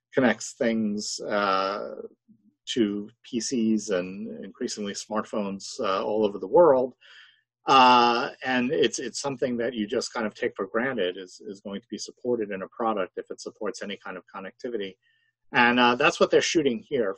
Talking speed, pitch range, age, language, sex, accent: 170 wpm, 100-120 Hz, 40-59, English, male, American